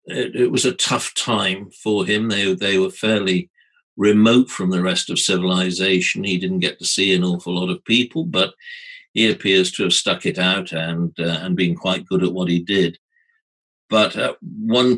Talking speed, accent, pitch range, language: 195 wpm, British, 90-115 Hz, English